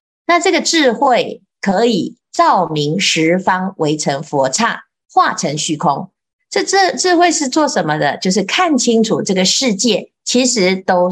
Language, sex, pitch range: Chinese, female, 165-245 Hz